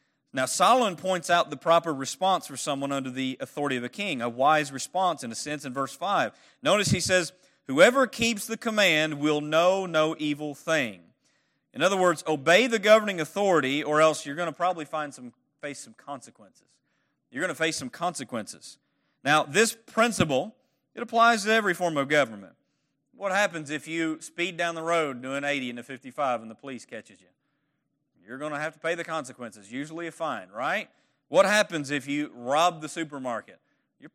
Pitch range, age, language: 145-185 Hz, 40-59, English